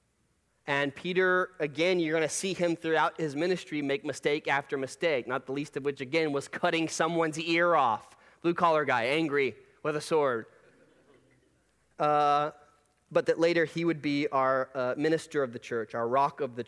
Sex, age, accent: male, 30-49, American